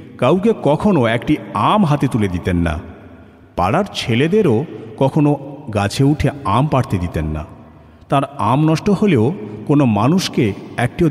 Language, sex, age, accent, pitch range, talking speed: Bengali, male, 50-69, native, 100-140 Hz, 130 wpm